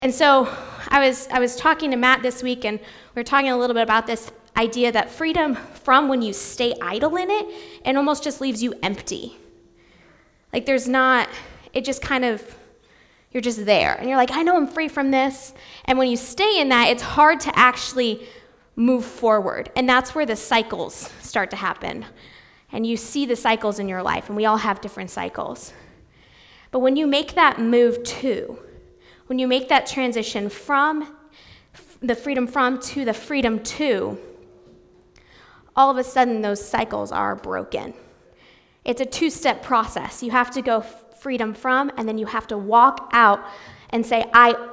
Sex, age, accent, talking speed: female, 20-39, American, 185 wpm